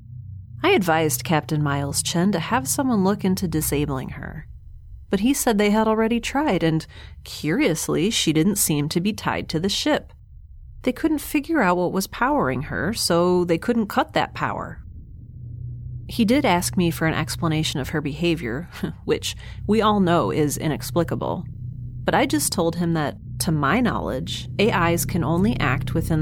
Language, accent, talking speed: English, American, 170 wpm